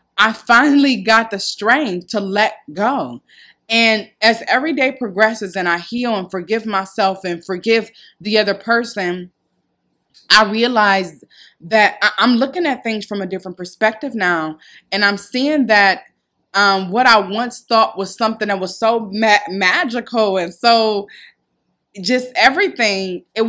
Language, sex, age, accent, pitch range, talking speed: English, female, 20-39, American, 190-230 Hz, 145 wpm